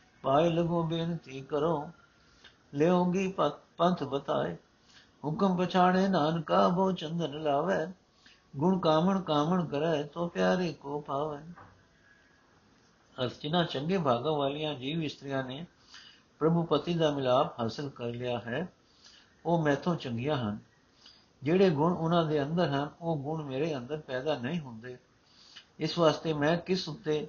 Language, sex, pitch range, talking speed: Punjabi, male, 135-165 Hz, 80 wpm